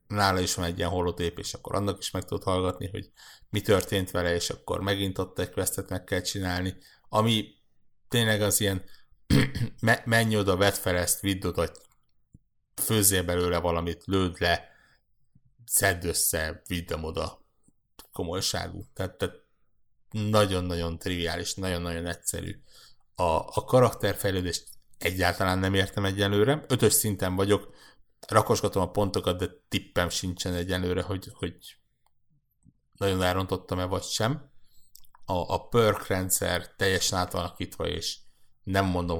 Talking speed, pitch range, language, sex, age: 130 wpm, 90-110 Hz, Hungarian, male, 60-79